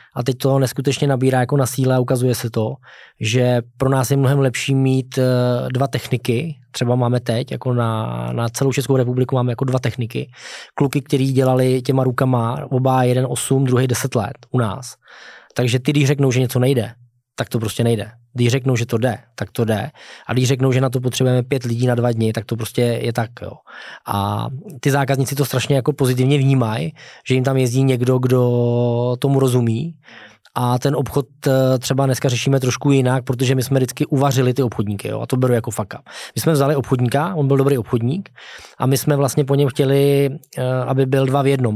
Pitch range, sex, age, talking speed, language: 125-140 Hz, male, 20-39, 200 wpm, Czech